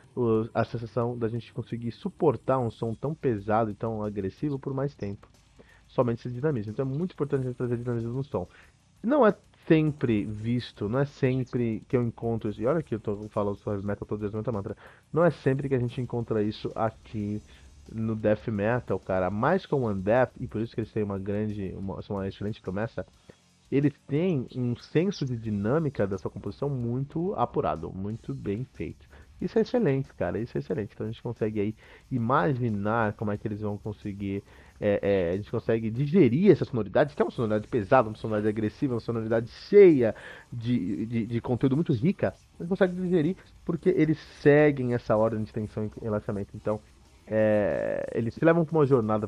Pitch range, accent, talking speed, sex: 105-135 Hz, Brazilian, 195 wpm, male